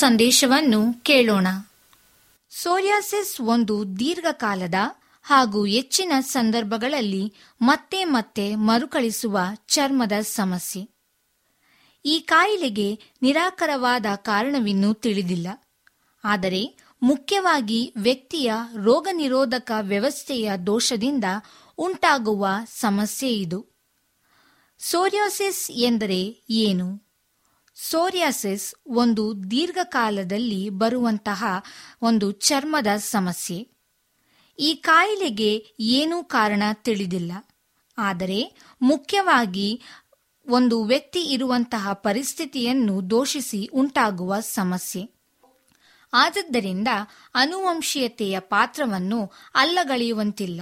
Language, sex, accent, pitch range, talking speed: Kannada, female, native, 205-280 Hz, 65 wpm